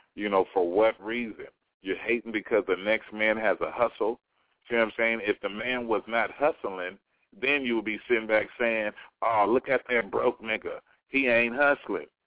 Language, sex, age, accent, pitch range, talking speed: English, male, 40-59, American, 110-140 Hz, 195 wpm